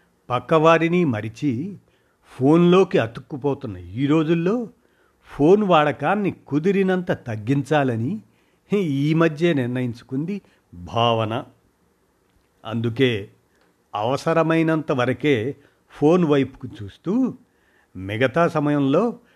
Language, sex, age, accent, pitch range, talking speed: Telugu, male, 50-69, native, 115-155 Hz, 70 wpm